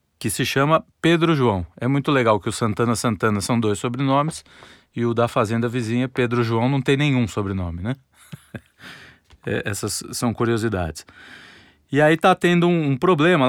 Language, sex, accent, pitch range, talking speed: Portuguese, male, Brazilian, 110-140 Hz, 165 wpm